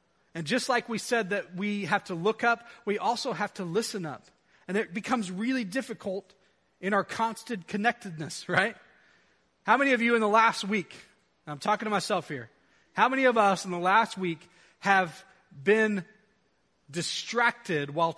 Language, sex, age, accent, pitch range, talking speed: English, male, 30-49, American, 165-225 Hz, 170 wpm